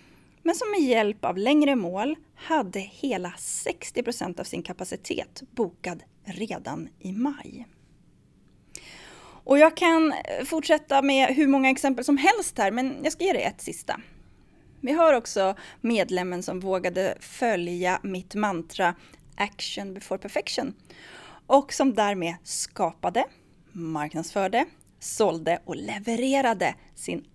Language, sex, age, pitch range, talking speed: Swedish, female, 30-49, 185-285 Hz, 125 wpm